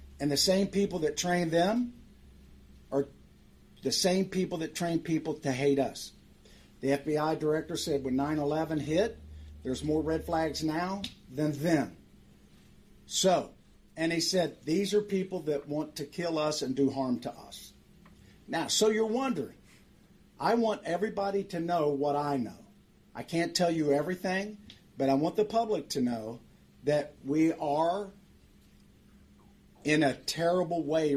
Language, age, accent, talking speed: English, 50-69, American, 150 wpm